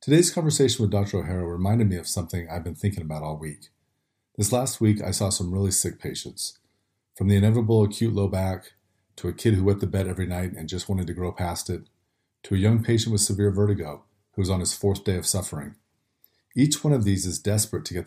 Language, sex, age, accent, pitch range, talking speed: English, male, 40-59, American, 95-110 Hz, 230 wpm